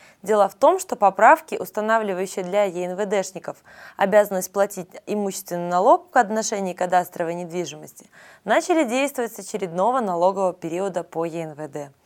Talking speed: 120 wpm